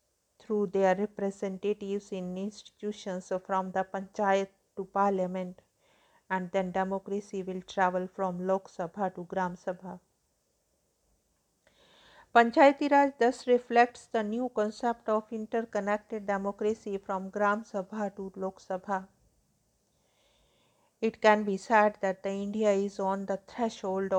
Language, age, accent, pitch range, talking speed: English, 50-69, Indian, 190-210 Hz, 115 wpm